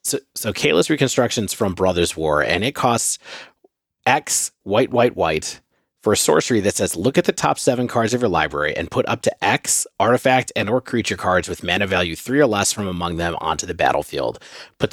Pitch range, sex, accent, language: 95-135 Hz, male, American, English